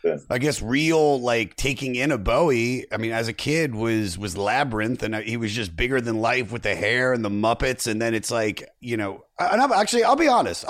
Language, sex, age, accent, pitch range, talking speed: English, male, 30-49, American, 115-155 Hz, 225 wpm